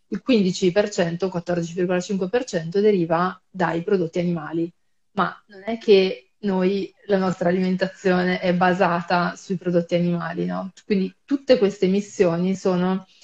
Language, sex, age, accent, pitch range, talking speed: Italian, female, 30-49, native, 180-200 Hz, 120 wpm